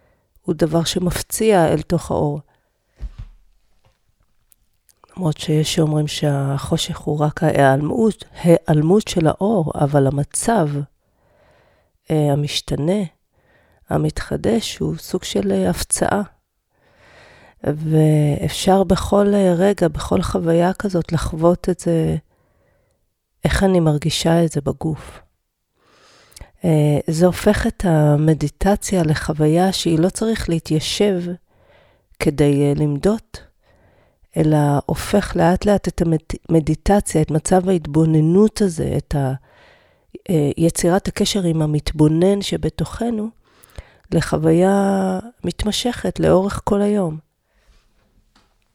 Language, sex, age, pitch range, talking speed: Hebrew, female, 40-59, 145-185 Hz, 90 wpm